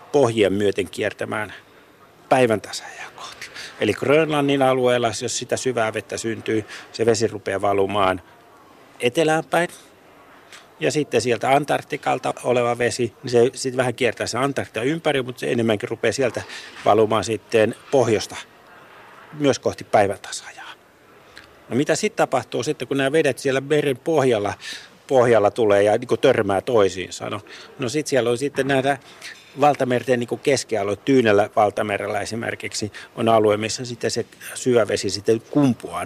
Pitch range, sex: 110-135 Hz, male